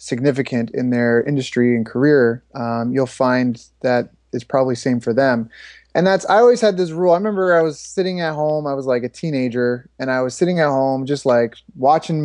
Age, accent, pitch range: 20-39, American, 130-170 Hz